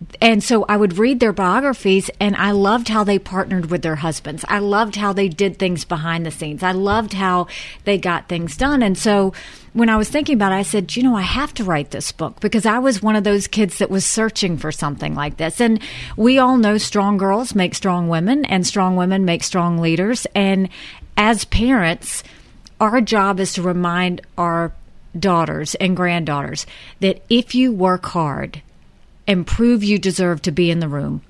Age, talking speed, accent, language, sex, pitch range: 50-69, 200 wpm, American, English, female, 170-215 Hz